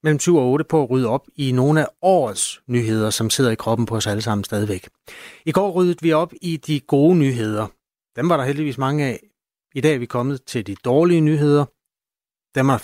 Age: 30-49